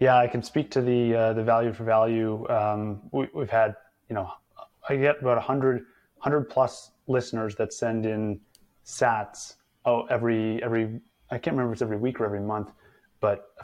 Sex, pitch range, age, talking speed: male, 110-125 Hz, 20-39, 185 wpm